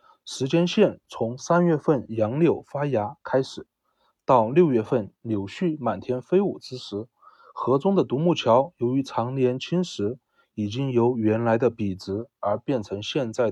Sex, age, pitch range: male, 30-49, 110-150 Hz